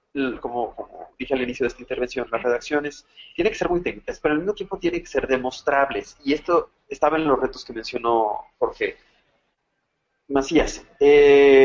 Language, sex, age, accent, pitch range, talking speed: Spanish, male, 30-49, Mexican, 125-175 Hz, 170 wpm